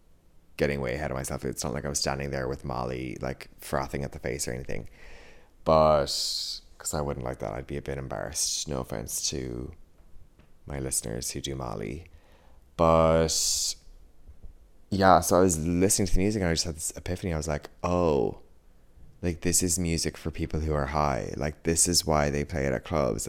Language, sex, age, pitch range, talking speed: English, male, 20-39, 70-85 Hz, 195 wpm